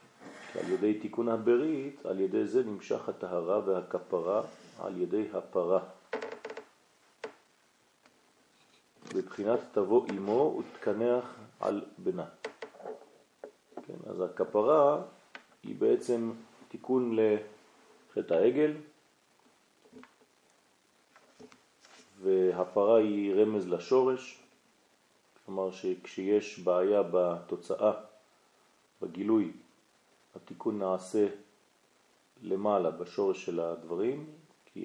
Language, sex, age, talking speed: French, male, 40-59, 55 wpm